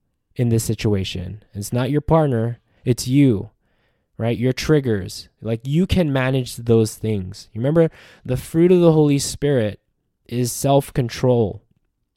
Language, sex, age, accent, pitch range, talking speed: English, male, 20-39, American, 110-135 Hz, 135 wpm